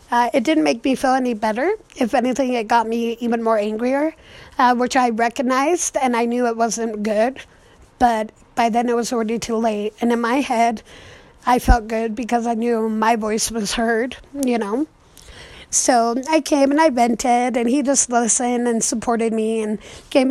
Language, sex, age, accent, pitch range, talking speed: English, female, 20-39, American, 230-275 Hz, 190 wpm